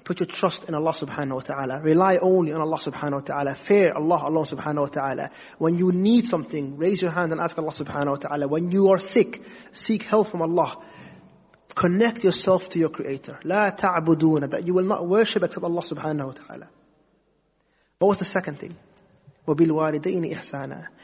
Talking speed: 185 wpm